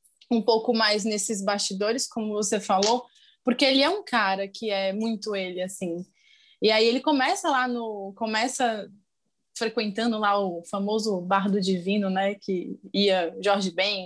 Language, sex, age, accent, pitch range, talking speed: Portuguese, female, 20-39, Brazilian, 205-250 Hz, 160 wpm